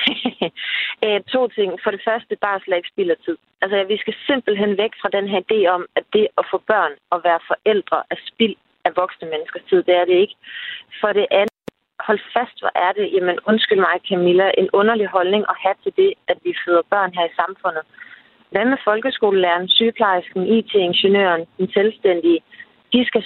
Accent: native